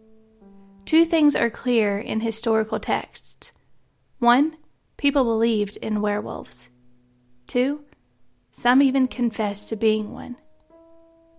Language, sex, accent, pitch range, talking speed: English, female, American, 215-255 Hz, 100 wpm